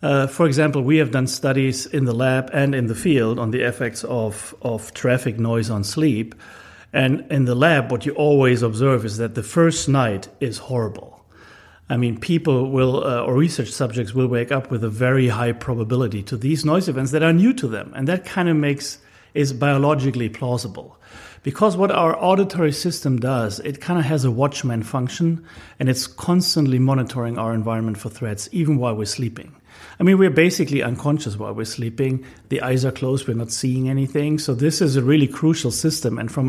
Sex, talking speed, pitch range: male, 200 wpm, 120-150 Hz